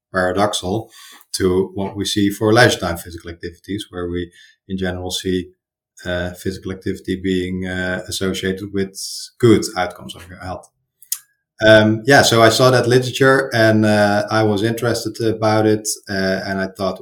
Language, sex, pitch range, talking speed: English, male, 95-110 Hz, 160 wpm